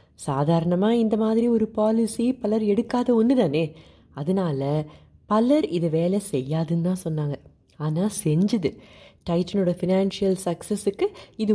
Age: 30-49